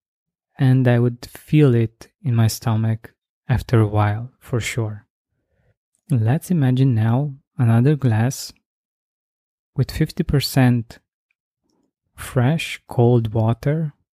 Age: 20-39